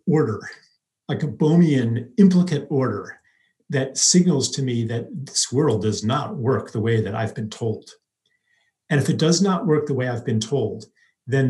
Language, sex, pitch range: English, male, 115-150 Hz